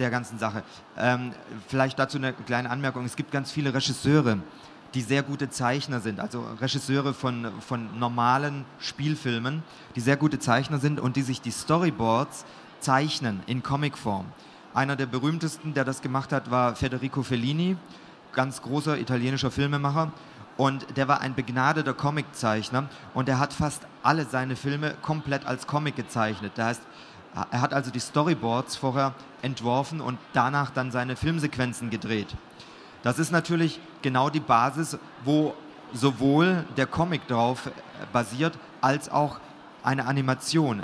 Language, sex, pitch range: German, male, 125-150 Hz